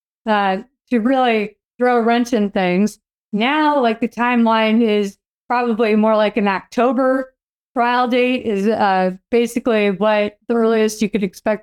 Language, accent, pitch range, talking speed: English, American, 205-245 Hz, 150 wpm